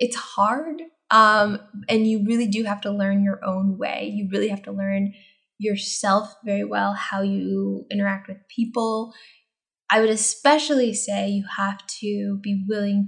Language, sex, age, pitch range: English, female, 10-29, 200-245 Hz